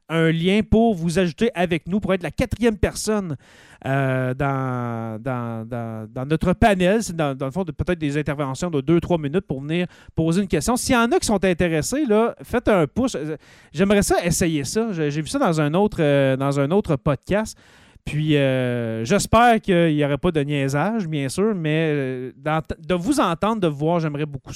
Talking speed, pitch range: 200 wpm, 145-205 Hz